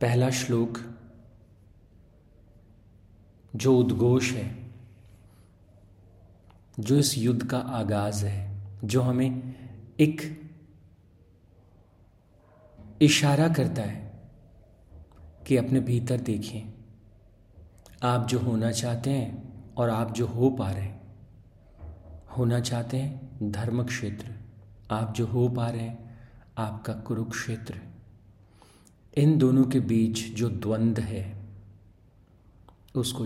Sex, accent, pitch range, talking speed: male, native, 100-120 Hz, 95 wpm